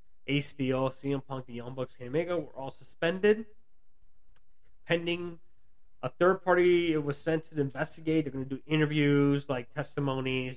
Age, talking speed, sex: 20-39, 160 wpm, male